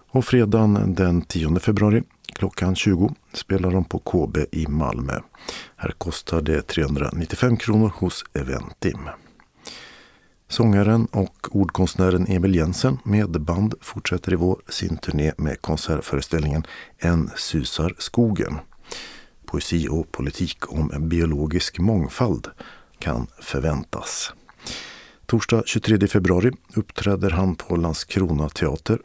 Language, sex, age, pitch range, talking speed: Swedish, male, 50-69, 80-105 Hz, 105 wpm